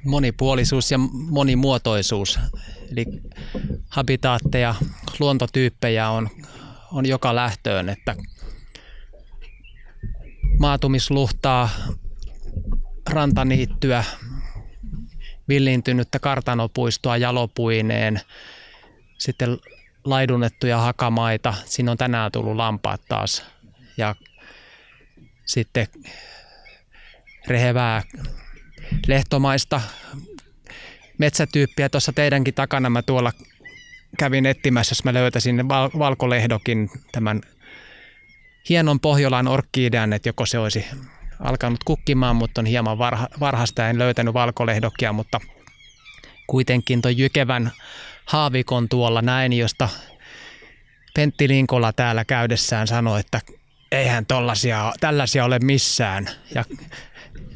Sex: male